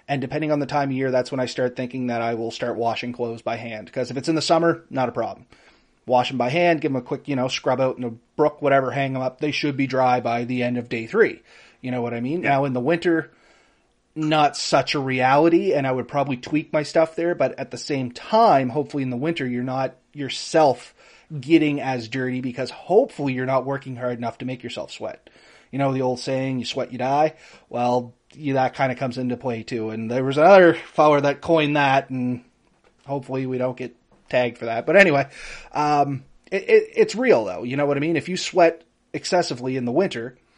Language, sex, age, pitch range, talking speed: English, male, 30-49, 125-150 Hz, 230 wpm